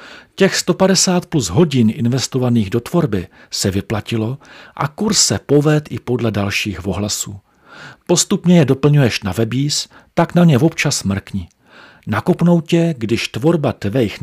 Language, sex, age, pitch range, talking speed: Czech, male, 40-59, 110-165 Hz, 135 wpm